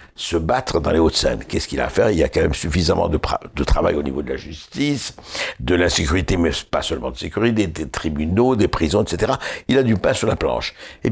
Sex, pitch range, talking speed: male, 85-125 Hz, 255 wpm